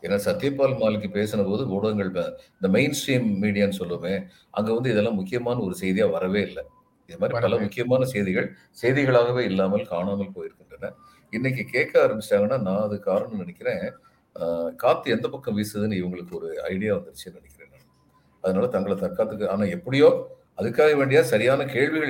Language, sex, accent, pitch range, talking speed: Tamil, male, native, 100-150 Hz, 145 wpm